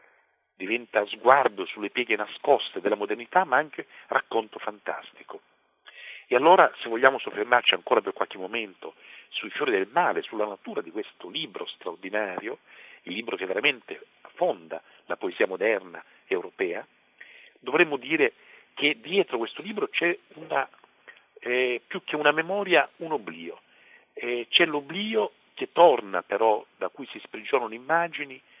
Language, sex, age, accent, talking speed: Italian, male, 50-69, native, 130 wpm